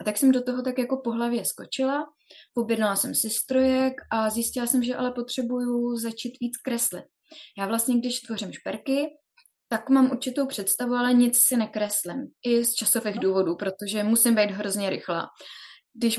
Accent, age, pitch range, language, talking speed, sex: native, 20-39, 200-245 Hz, Czech, 170 wpm, female